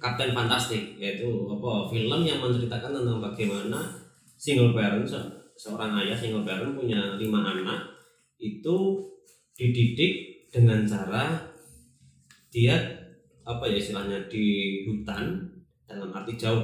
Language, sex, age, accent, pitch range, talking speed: Indonesian, male, 20-39, native, 105-135 Hz, 110 wpm